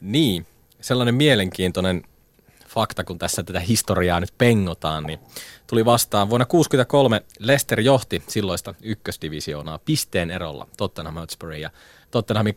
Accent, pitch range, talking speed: native, 90-115 Hz, 120 wpm